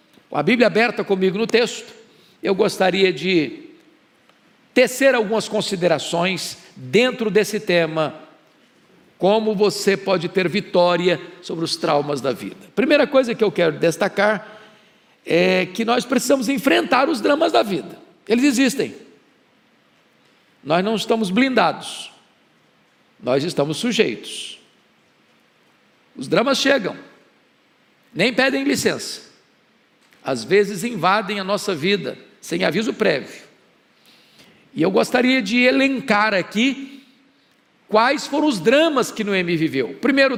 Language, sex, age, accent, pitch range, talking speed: Portuguese, male, 50-69, Brazilian, 195-260 Hz, 115 wpm